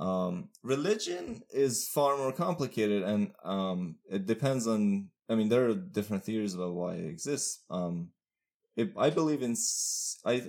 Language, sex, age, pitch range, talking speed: English, male, 20-39, 90-115 Hz, 155 wpm